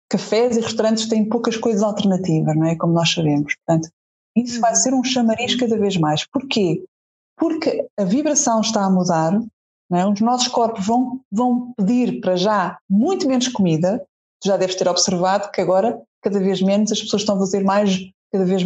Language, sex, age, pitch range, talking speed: Portuguese, female, 20-39, 190-230 Hz, 185 wpm